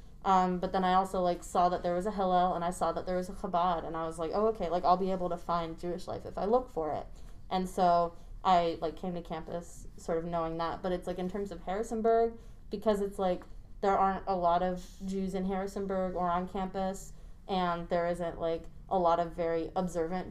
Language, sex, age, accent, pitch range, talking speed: English, female, 20-39, American, 170-190 Hz, 235 wpm